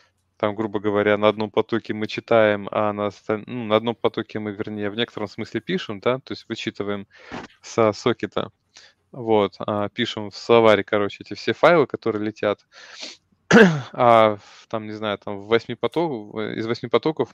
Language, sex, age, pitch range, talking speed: Russian, male, 20-39, 105-120 Hz, 165 wpm